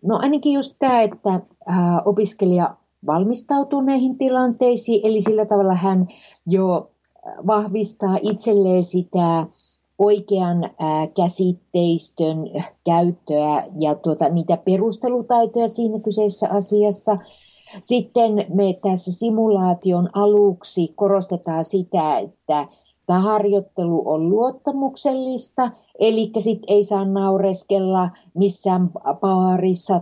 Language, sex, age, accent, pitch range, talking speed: Finnish, female, 50-69, native, 180-220 Hz, 90 wpm